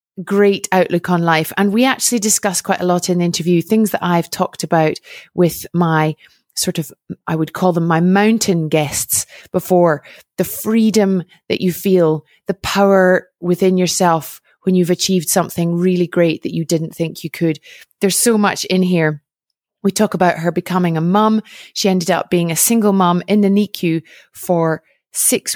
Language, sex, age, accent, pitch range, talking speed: English, female, 30-49, British, 165-200 Hz, 180 wpm